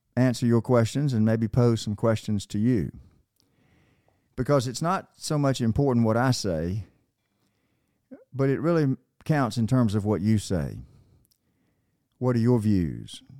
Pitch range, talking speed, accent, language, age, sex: 100-130 Hz, 150 wpm, American, English, 50-69, male